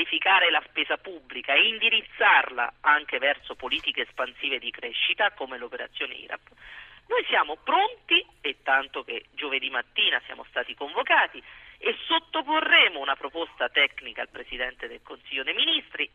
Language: Italian